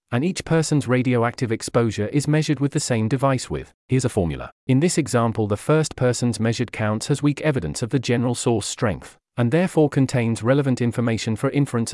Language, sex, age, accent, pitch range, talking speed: English, male, 40-59, British, 110-140 Hz, 190 wpm